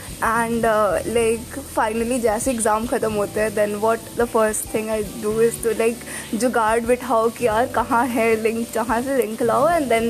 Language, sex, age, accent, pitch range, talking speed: Hindi, female, 20-39, native, 225-290 Hz, 195 wpm